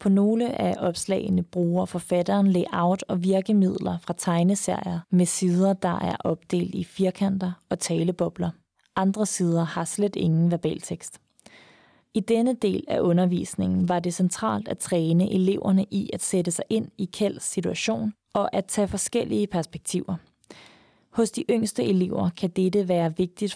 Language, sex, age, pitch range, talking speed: Danish, female, 20-39, 175-200 Hz, 150 wpm